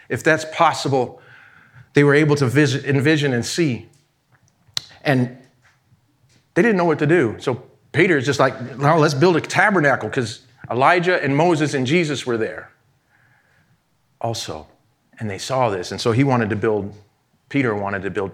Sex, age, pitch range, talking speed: male, 40-59, 130-180 Hz, 165 wpm